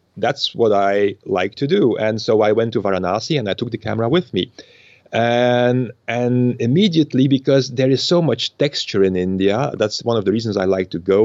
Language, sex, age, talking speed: English, male, 30-49, 210 wpm